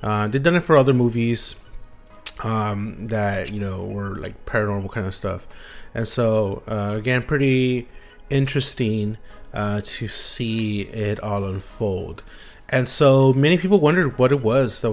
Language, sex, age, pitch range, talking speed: English, male, 30-49, 105-125 Hz, 155 wpm